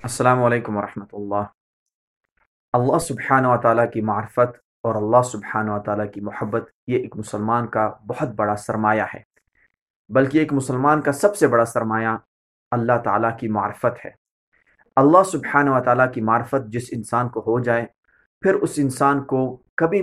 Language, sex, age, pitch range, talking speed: Urdu, male, 30-49, 120-145 Hz, 160 wpm